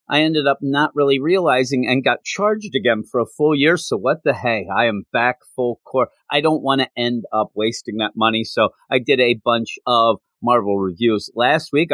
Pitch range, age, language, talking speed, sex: 110-145 Hz, 40-59, English, 210 wpm, male